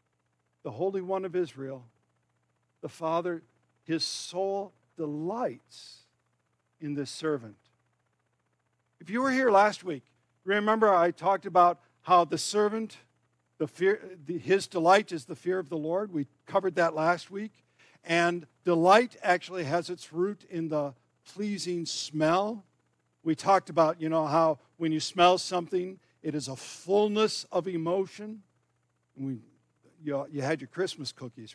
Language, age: English, 60-79